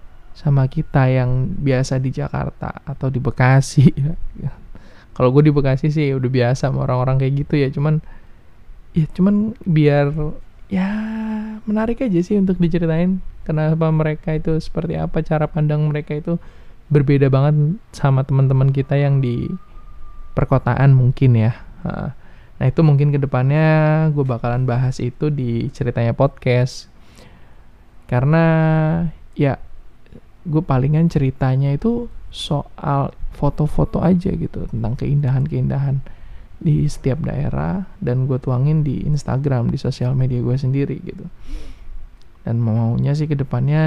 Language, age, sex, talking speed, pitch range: Indonesian, 20-39, male, 125 wpm, 125-160 Hz